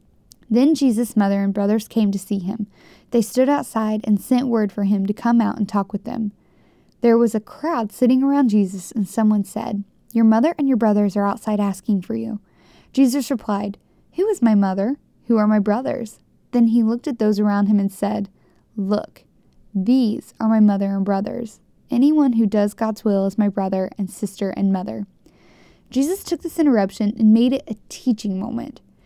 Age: 10-29